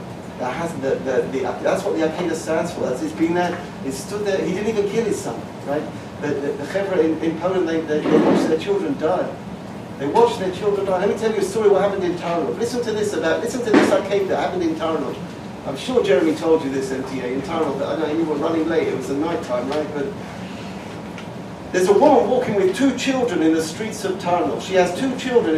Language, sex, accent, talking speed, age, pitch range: English, male, British, 235 wpm, 50-69, 175-260 Hz